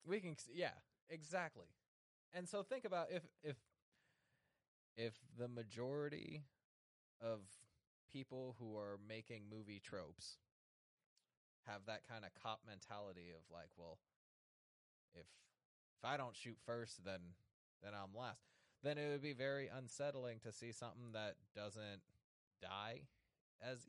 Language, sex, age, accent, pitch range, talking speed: English, male, 20-39, American, 100-145 Hz, 135 wpm